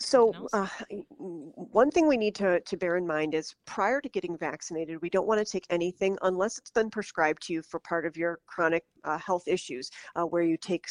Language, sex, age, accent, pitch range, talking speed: English, female, 50-69, American, 160-190 Hz, 220 wpm